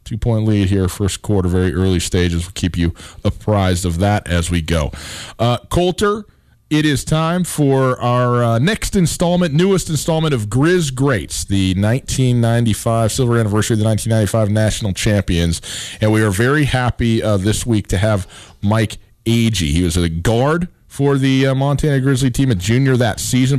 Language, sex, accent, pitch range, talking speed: English, male, American, 100-125 Hz, 170 wpm